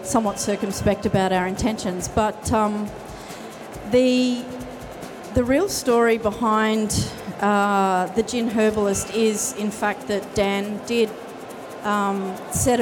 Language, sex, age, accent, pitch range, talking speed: English, female, 30-49, Australian, 195-220 Hz, 110 wpm